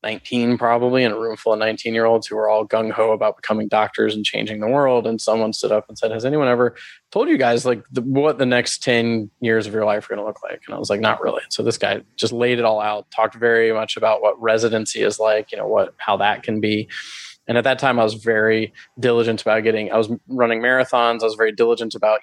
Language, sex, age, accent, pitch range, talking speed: English, male, 20-39, American, 110-125 Hz, 255 wpm